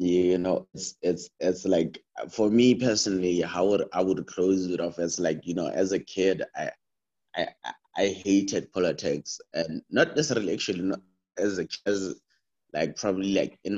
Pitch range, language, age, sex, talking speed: 85-100 Hz, English, 20-39, male, 175 wpm